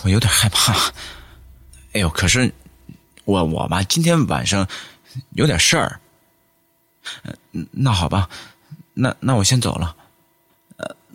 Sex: male